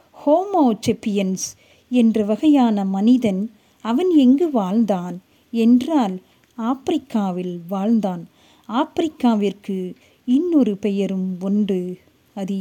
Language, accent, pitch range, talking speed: Tamil, native, 200-255 Hz, 75 wpm